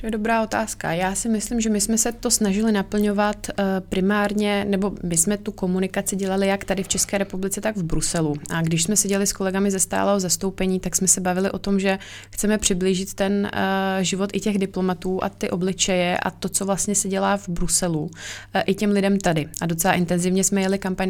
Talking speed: 210 wpm